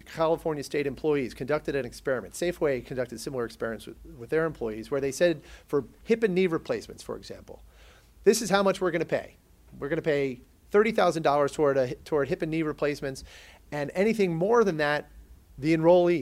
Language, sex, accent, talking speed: English, male, American, 185 wpm